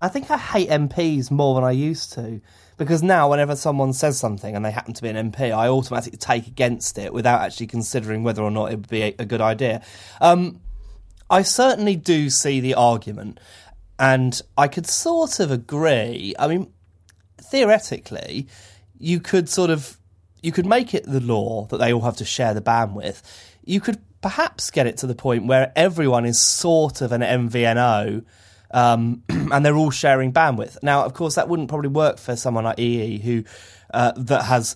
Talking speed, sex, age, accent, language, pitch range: 190 wpm, male, 20-39, British, English, 110-140 Hz